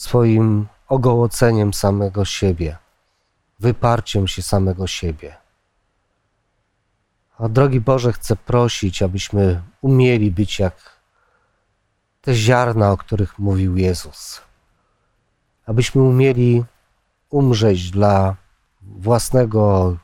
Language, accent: Polish, native